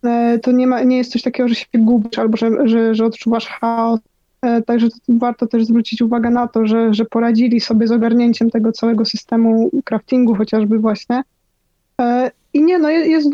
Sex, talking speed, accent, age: female, 175 wpm, native, 20-39